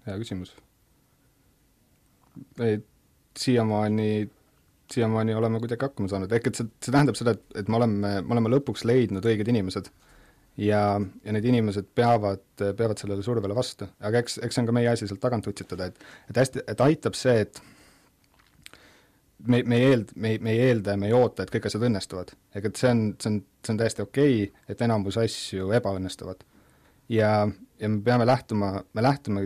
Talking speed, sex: 185 wpm, male